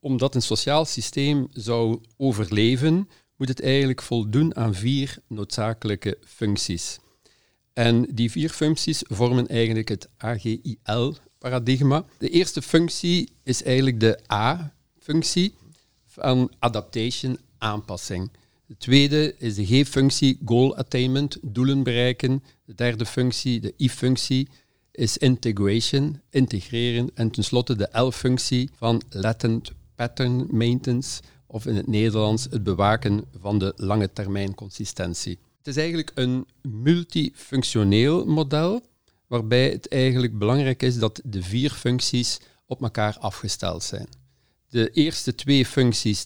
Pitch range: 110-135 Hz